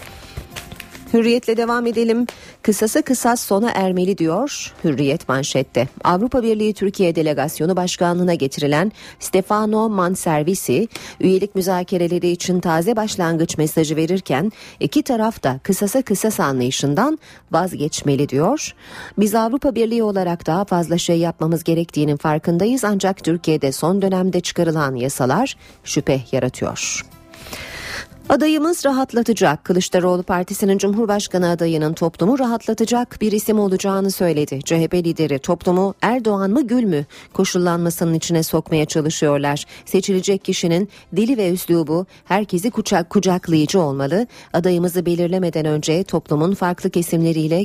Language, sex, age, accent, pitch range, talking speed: Turkish, female, 40-59, native, 160-210 Hz, 115 wpm